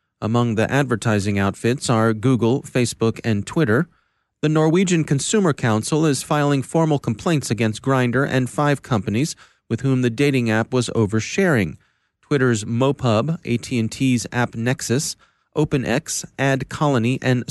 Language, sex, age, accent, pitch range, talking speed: English, male, 30-49, American, 115-145 Hz, 130 wpm